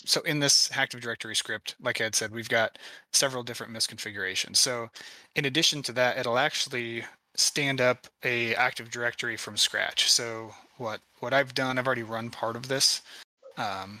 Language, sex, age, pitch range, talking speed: English, male, 20-39, 110-125 Hz, 175 wpm